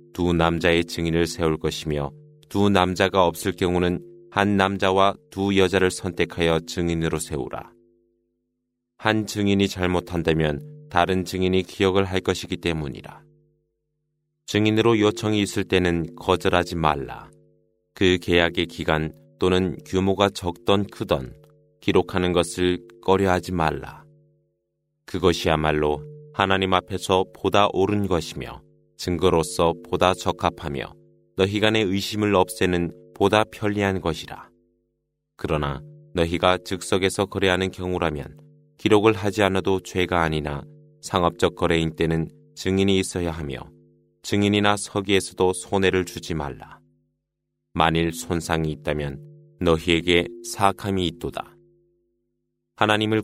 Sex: male